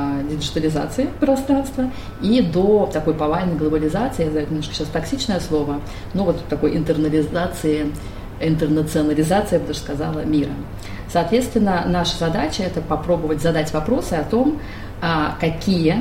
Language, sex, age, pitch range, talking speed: Russian, female, 30-49, 150-180 Hz, 125 wpm